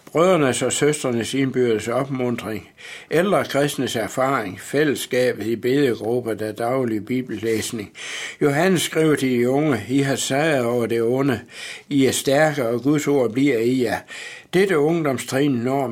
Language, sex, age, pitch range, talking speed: Danish, male, 60-79, 120-140 Hz, 150 wpm